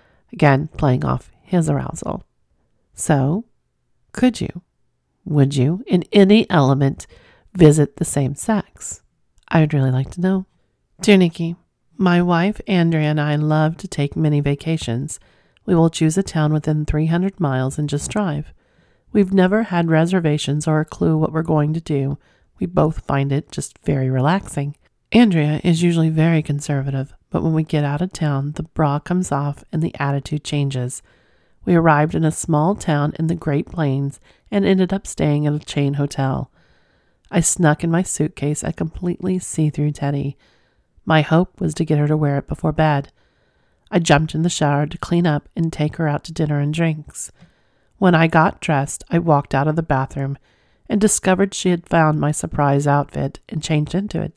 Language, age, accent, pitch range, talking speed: English, 40-59, American, 145-170 Hz, 180 wpm